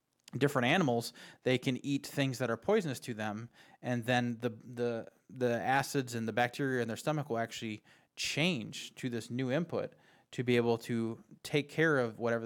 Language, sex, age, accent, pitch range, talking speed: English, male, 20-39, American, 115-135 Hz, 185 wpm